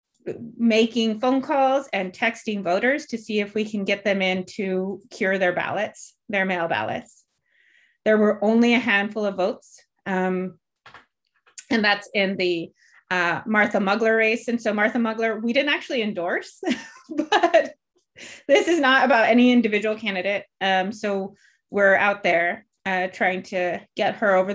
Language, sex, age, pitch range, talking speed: English, female, 30-49, 190-235 Hz, 155 wpm